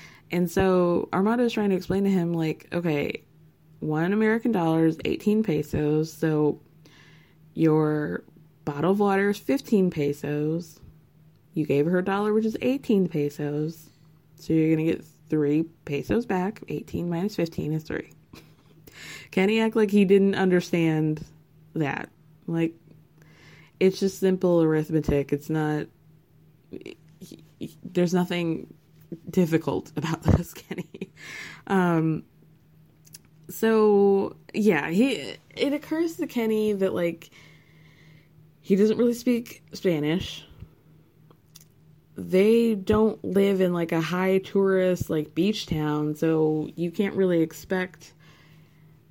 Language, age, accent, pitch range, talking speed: English, 20-39, American, 155-190 Hz, 120 wpm